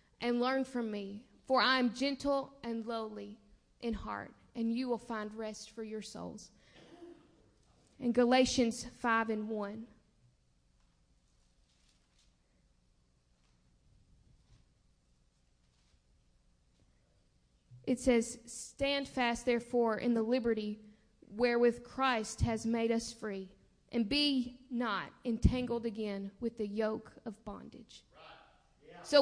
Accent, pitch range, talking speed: American, 215-295 Hz, 105 wpm